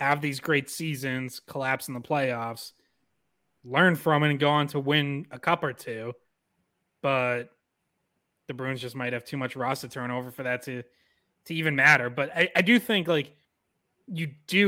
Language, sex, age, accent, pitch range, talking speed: English, male, 20-39, American, 120-145 Hz, 190 wpm